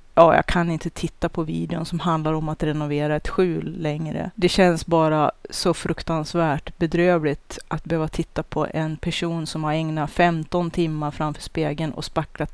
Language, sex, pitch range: Swedish, female, 155-180 Hz